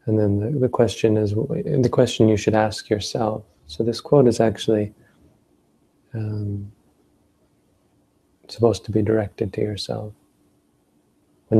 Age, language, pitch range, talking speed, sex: 30-49, English, 100-110 Hz, 130 wpm, male